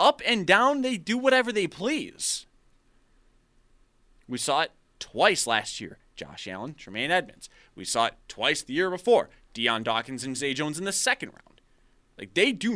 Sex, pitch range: male, 120-165 Hz